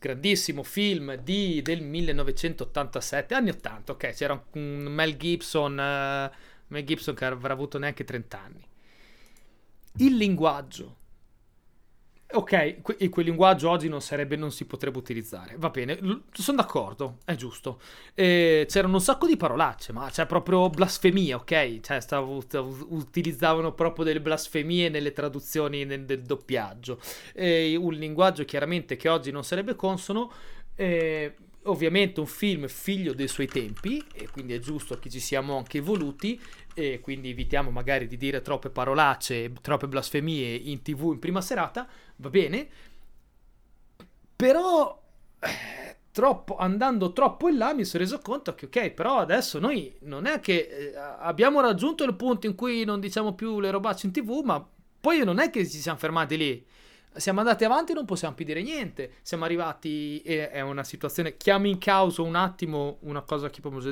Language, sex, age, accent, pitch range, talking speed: Italian, male, 30-49, native, 140-195 Hz, 160 wpm